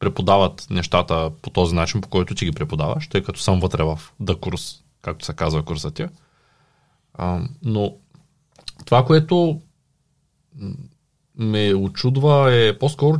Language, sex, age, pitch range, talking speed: Bulgarian, male, 30-49, 110-155 Hz, 125 wpm